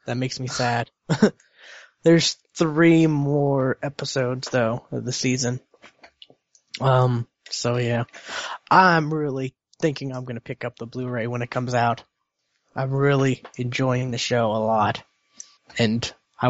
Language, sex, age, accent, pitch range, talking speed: English, male, 20-39, American, 130-155 Hz, 140 wpm